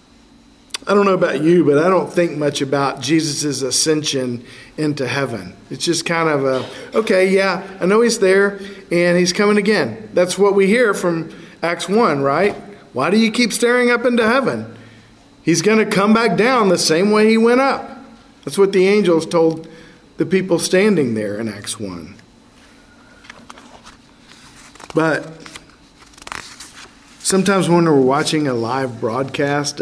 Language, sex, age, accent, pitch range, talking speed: English, male, 50-69, American, 150-195 Hz, 155 wpm